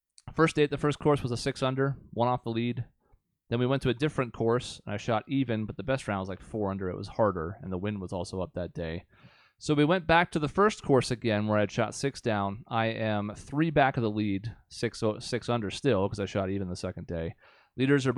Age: 30-49